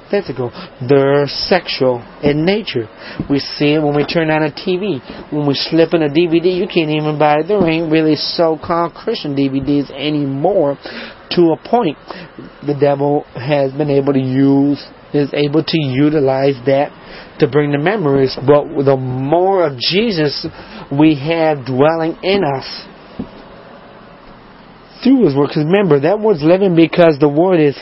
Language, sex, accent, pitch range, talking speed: English, male, American, 145-175 Hz, 155 wpm